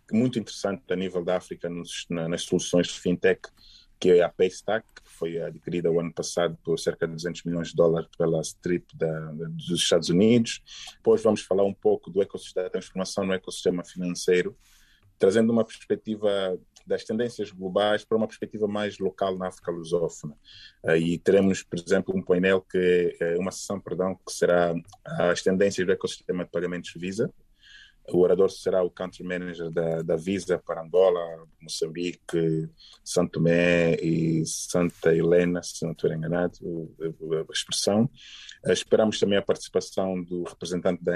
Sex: male